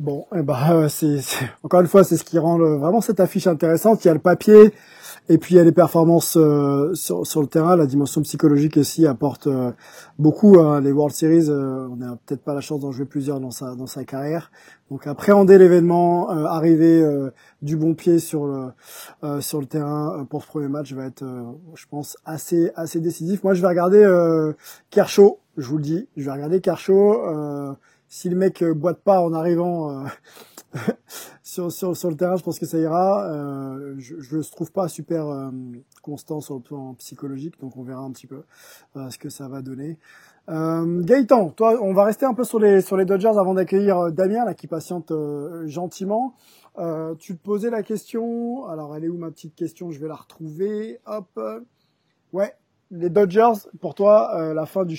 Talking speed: 210 wpm